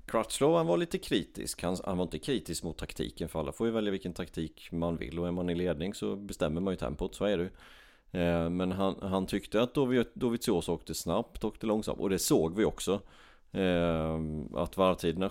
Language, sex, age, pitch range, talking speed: Swedish, male, 30-49, 85-95 Hz, 190 wpm